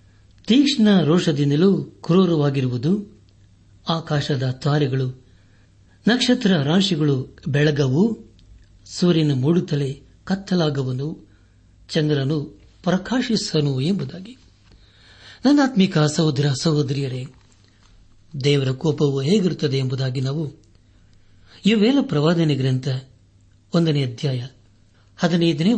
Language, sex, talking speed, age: Kannada, male, 65 wpm, 60-79